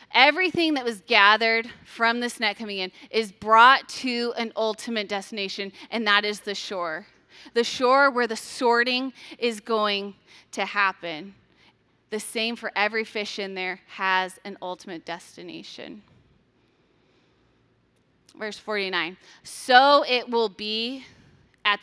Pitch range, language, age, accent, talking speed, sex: 200-250 Hz, English, 20-39, American, 130 wpm, female